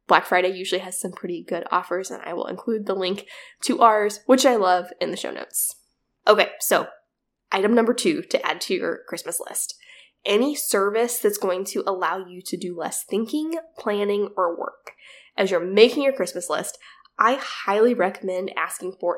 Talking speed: 185 wpm